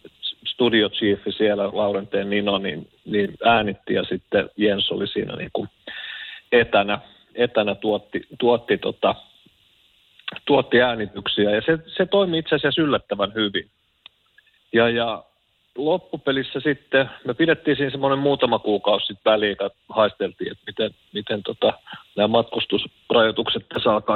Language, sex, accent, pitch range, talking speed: Finnish, male, native, 105-135 Hz, 125 wpm